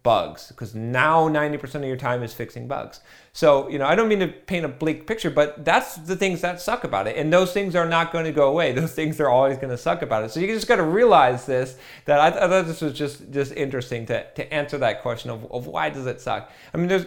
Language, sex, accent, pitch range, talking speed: English, male, American, 125-165 Hz, 275 wpm